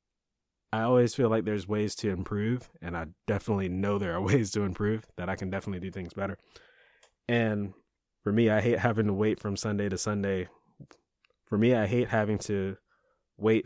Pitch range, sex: 95-110 Hz, male